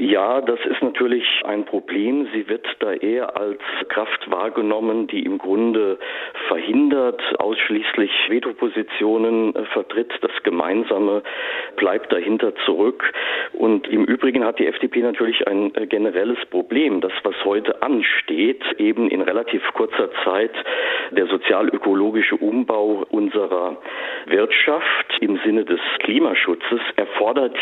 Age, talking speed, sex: 50-69, 115 wpm, male